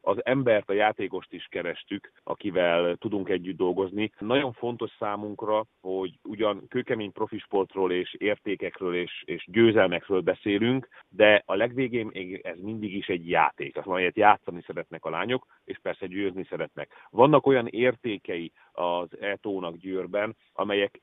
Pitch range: 95-115 Hz